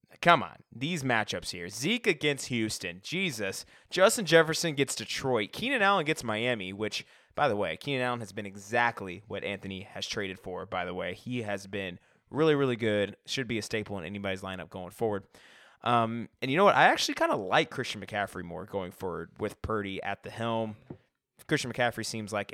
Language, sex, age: English, male, 20-39